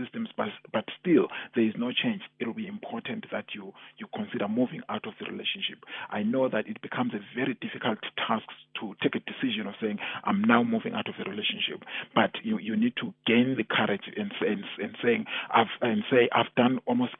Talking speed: 210 wpm